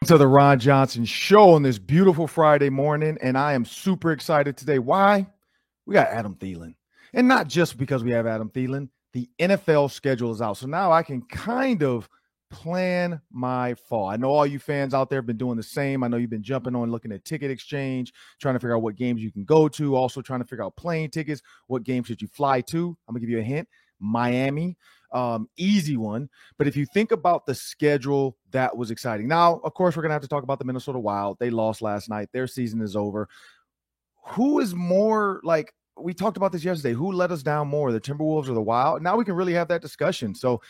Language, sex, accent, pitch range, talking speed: English, male, American, 120-165 Hz, 230 wpm